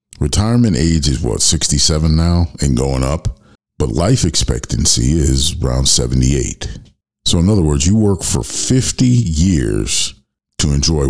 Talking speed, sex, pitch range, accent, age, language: 140 wpm, male, 70-95 Hz, American, 50-69, English